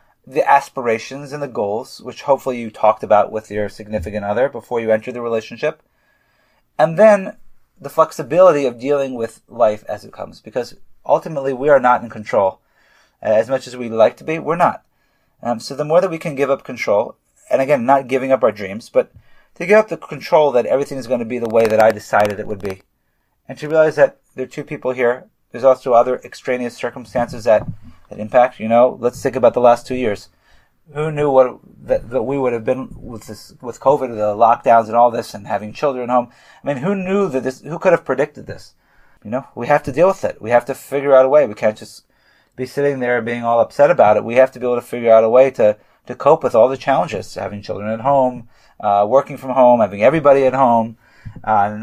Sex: male